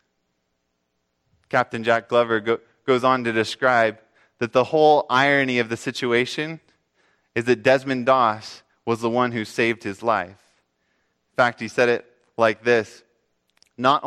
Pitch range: 115-145 Hz